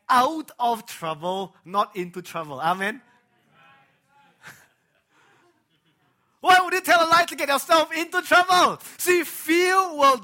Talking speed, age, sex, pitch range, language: 125 wpm, 30-49, male, 225-285 Hz, English